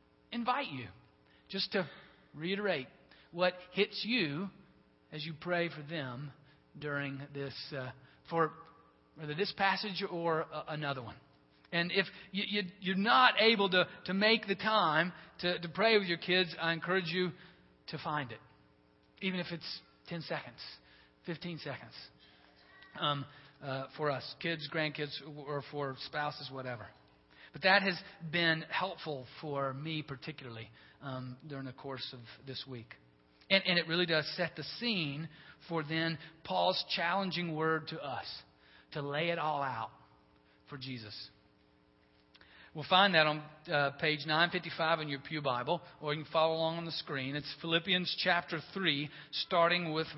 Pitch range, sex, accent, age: 135-175 Hz, male, American, 40-59